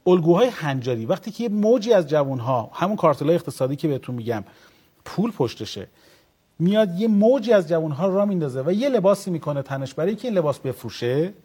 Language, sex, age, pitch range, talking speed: Persian, male, 40-59, 140-200 Hz, 170 wpm